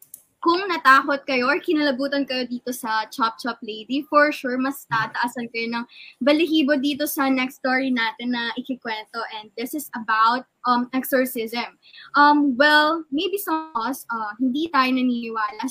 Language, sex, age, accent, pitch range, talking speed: Filipino, female, 20-39, native, 235-290 Hz, 160 wpm